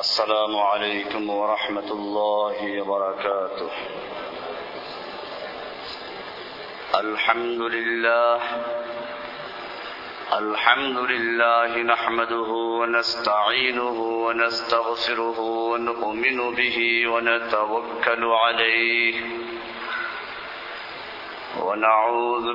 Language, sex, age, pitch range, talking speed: Bengali, male, 50-69, 115-145 Hz, 45 wpm